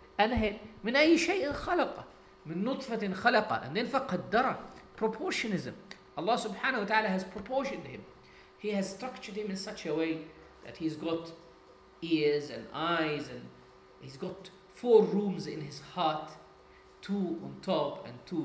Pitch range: 155-200 Hz